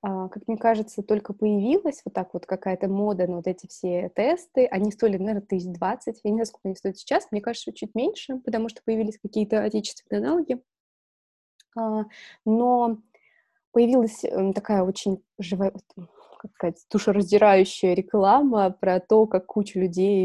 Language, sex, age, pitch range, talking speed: Russian, female, 20-39, 185-225 Hz, 155 wpm